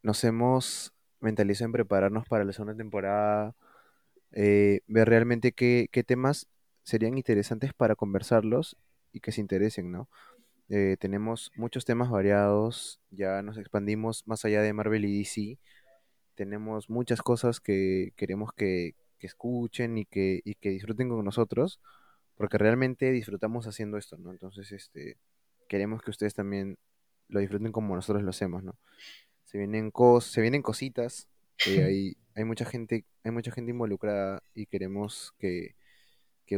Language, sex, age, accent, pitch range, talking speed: Spanish, male, 20-39, Argentinian, 100-115 Hz, 145 wpm